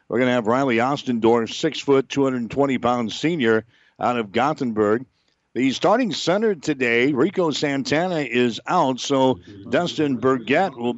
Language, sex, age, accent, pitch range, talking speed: English, male, 60-79, American, 120-150 Hz, 150 wpm